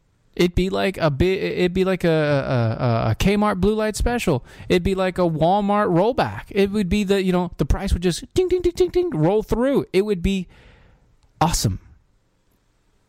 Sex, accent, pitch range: male, American, 115-180 Hz